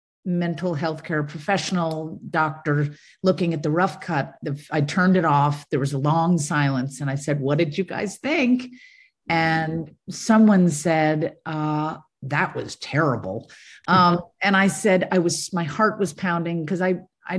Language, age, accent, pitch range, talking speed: English, 50-69, American, 150-185 Hz, 160 wpm